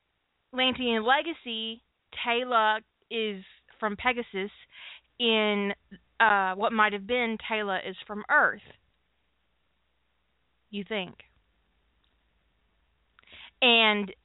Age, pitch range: 20-39, 195-245 Hz